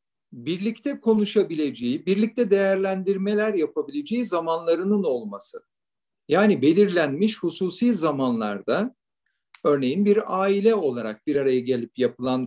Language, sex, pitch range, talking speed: Turkish, male, 165-230 Hz, 90 wpm